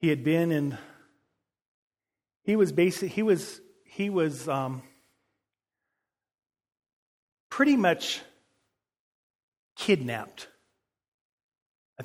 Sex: male